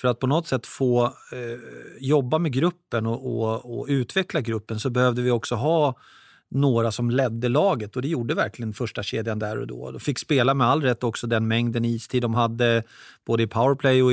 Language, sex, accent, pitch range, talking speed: Swedish, male, native, 115-135 Hz, 210 wpm